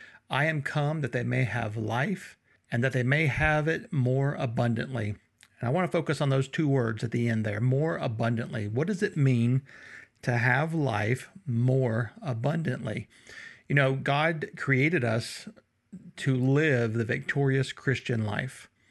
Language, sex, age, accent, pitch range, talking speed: English, male, 50-69, American, 120-150 Hz, 160 wpm